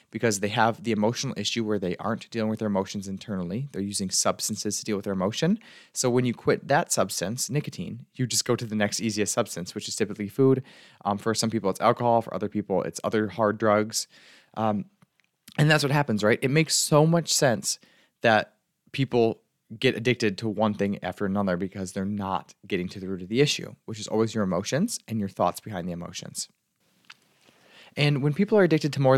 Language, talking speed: English, 210 wpm